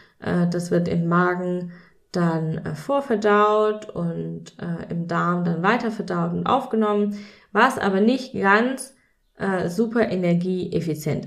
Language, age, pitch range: German, 20-39, 170-215 Hz